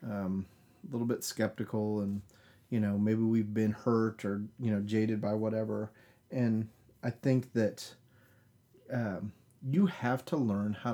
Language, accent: English, American